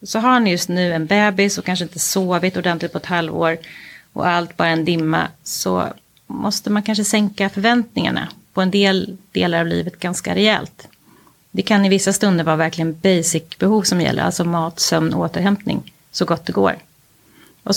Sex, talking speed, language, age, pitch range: female, 185 wpm, Swahili, 30-49, 175-225 Hz